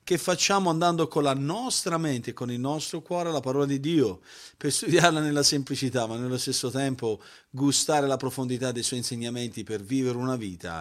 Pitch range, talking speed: 125-165 Hz, 190 wpm